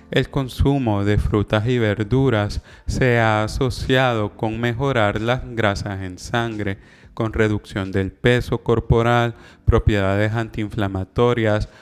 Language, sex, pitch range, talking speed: Spanish, male, 105-125 Hz, 110 wpm